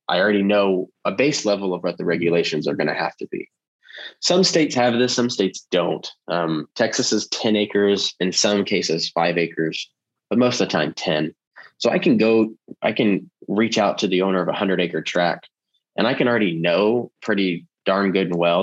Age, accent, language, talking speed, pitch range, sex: 20-39, American, English, 210 wpm, 85-110 Hz, male